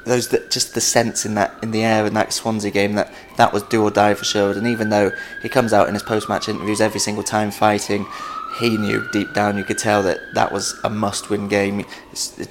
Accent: British